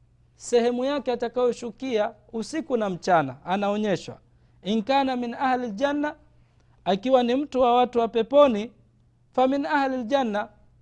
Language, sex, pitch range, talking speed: Swahili, male, 175-250 Hz, 115 wpm